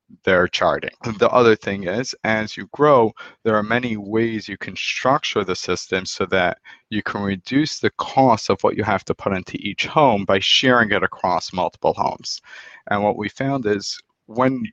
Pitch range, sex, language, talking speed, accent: 100-120 Hz, male, English, 185 wpm, American